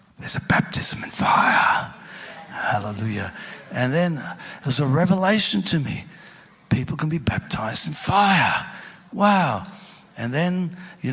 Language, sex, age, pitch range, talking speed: English, male, 60-79, 155-190 Hz, 125 wpm